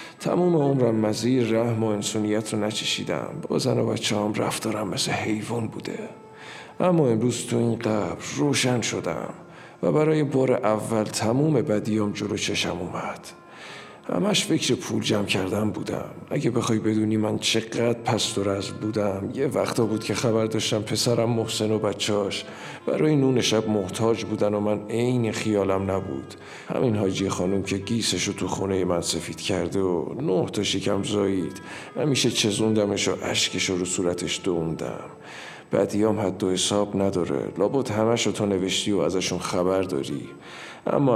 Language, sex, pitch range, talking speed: Persian, male, 100-115 Hz, 150 wpm